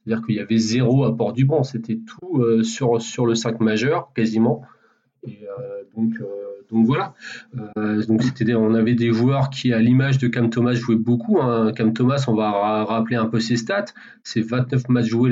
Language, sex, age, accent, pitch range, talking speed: French, male, 30-49, French, 115-150 Hz, 205 wpm